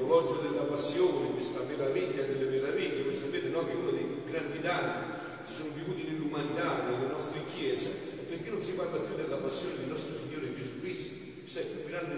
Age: 40-59